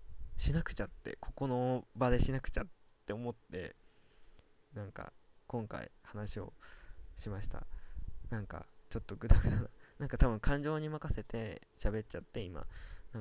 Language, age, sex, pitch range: Japanese, 20-39, male, 100-125 Hz